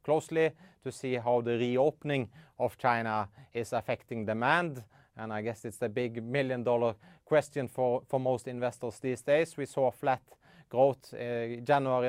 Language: English